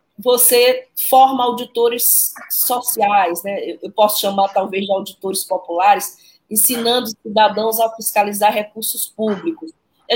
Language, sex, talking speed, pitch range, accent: Portuguese, female, 110 wpm, 195-240 Hz, Brazilian